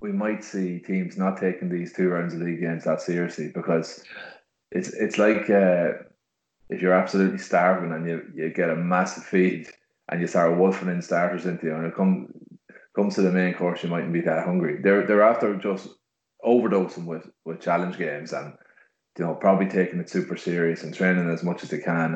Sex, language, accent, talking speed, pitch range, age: male, English, Irish, 210 wpm, 85-95 Hz, 20-39